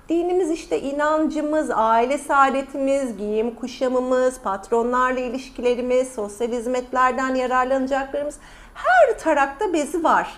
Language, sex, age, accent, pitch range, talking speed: Turkish, female, 40-59, native, 215-325 Hz, 95 wpm